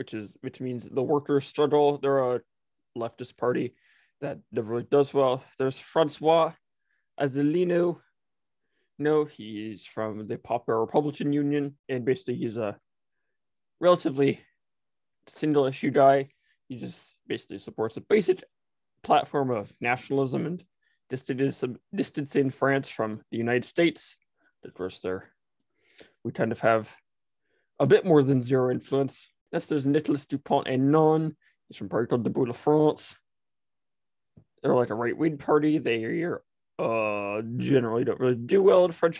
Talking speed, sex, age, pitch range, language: 140 wpm, male, 20-39, 125-155 Hz, English